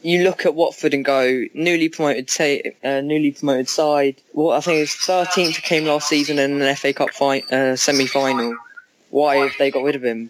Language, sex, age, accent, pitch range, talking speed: English, female, 10-29, British, 140-165 Hz, 215 wpm